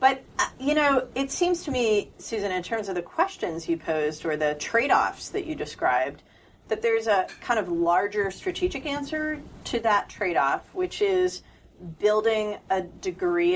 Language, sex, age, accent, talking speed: English, female, 40-59, American, 165 wpm